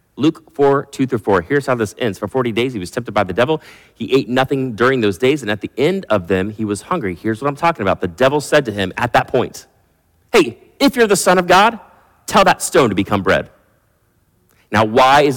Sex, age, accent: male, 30-49, American